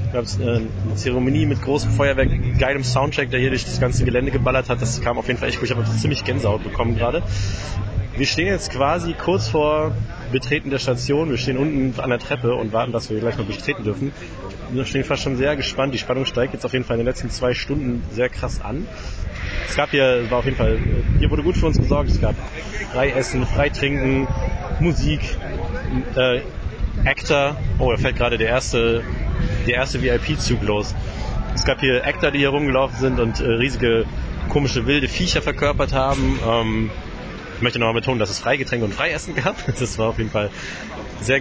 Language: German